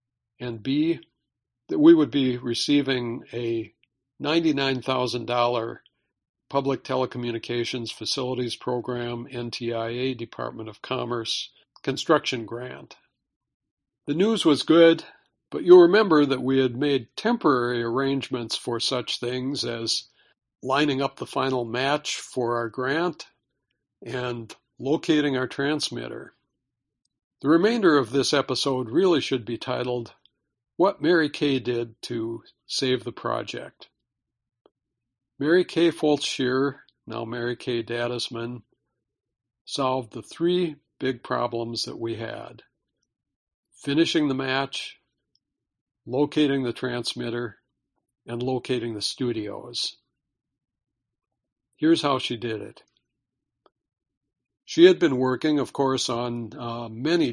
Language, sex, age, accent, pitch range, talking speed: English, male, 60-79, American, 120-140 Hz, 110 wpm